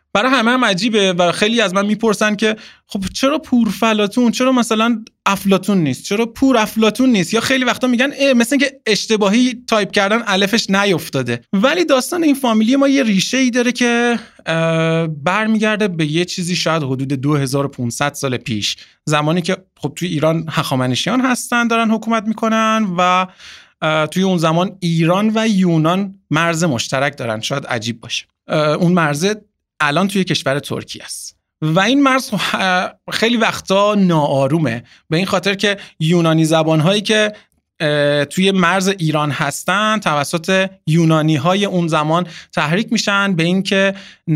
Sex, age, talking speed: male, 30-49, 140 wpm